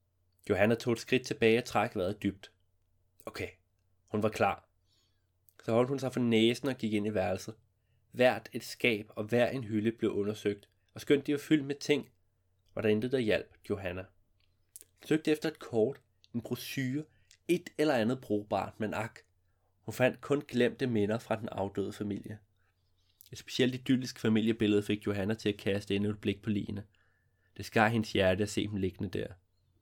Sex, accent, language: male, native, Danish